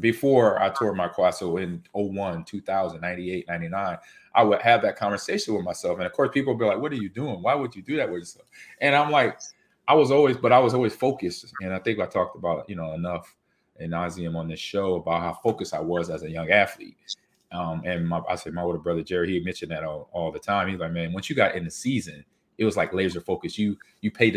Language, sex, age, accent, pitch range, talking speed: English, male, 30-49, American, 85-115 Hz, 245 wpm